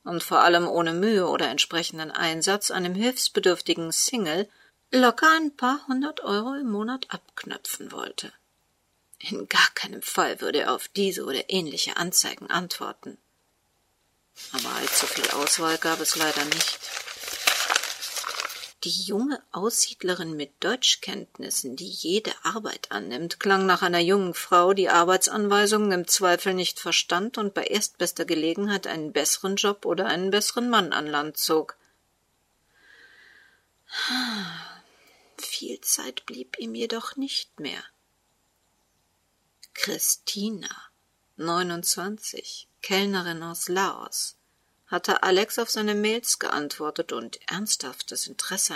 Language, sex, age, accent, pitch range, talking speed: German, female, 40-59, German, 165-220 Hz, 115 wpm